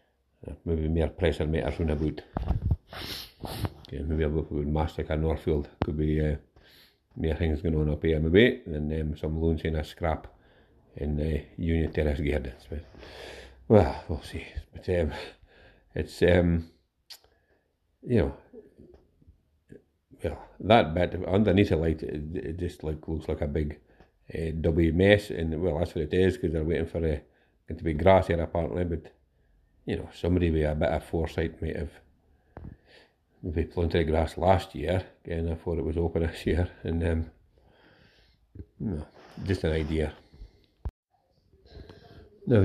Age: 50-69